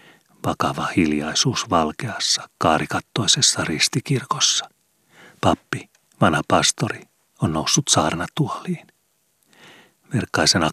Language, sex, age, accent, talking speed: Finnish, male, 40-59, native, 65 wpm